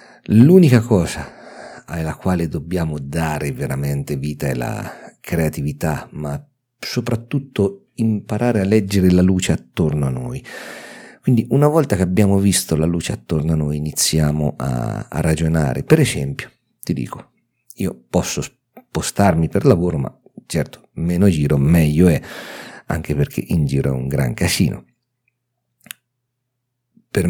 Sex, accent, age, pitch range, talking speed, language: male, native, 50-69, 80-120 Hz, 130 wpm, Italian